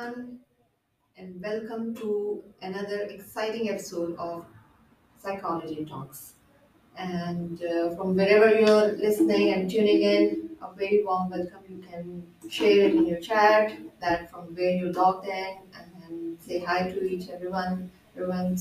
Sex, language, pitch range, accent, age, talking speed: female, English, 180-245 Hz, Indian, 30-49, 135 wpm